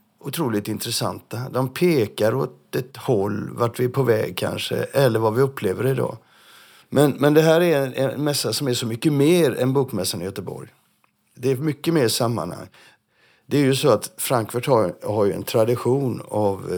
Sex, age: male, 50-69